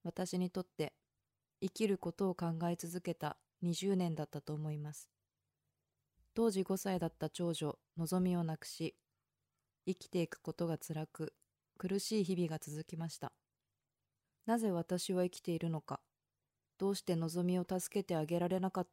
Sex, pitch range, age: female, 165-190 Hz, 20-39